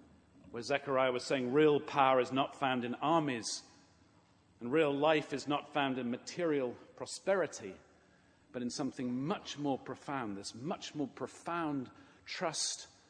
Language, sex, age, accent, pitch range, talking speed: English, male, 50-69, British, 100-150 Hz, 140 wpm